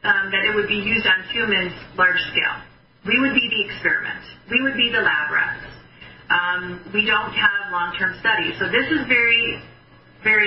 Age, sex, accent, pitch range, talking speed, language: 30-49, male, American, 180-215 Hz, 185 wpm, English